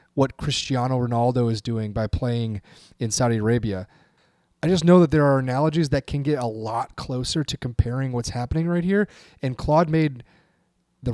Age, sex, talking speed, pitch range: 30-49, male, 180 wpm, 115-150 Hz